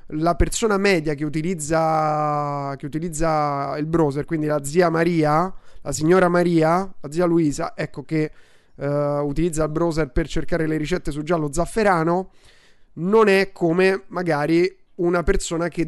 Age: 30-49